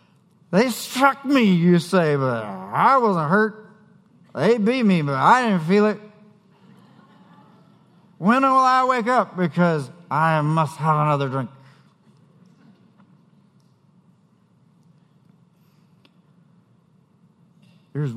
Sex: male